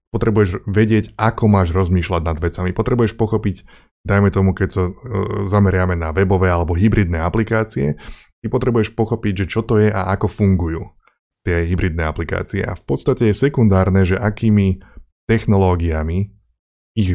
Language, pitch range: Slovak, 90-110 Hz